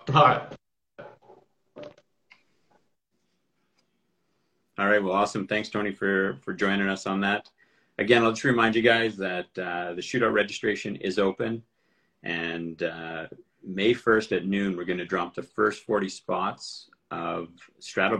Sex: male